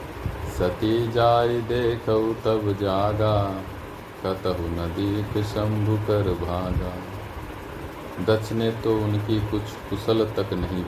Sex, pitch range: male, 90-105 Hz